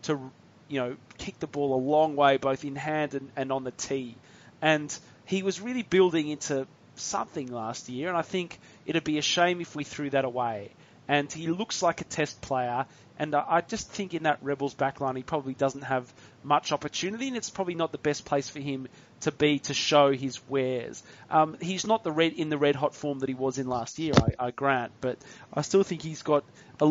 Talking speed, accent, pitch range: 225 wpm, Australian, 135-165 Hz